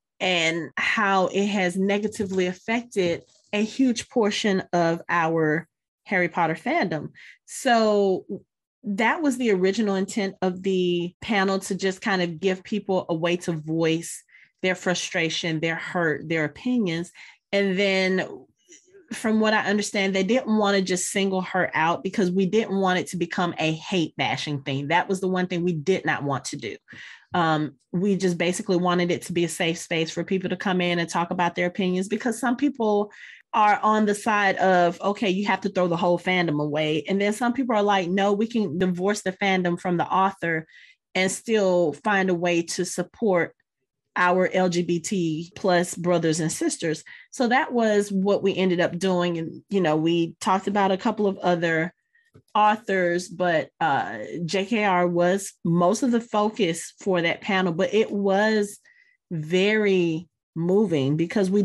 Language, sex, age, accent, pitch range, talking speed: English, female, 30-49, American, 175-205 Hz, 170 wpm